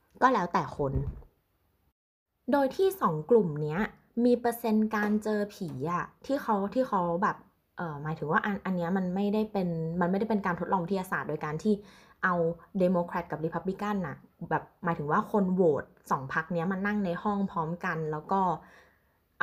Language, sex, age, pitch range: Thai, female, 20-39, 155-205 Hz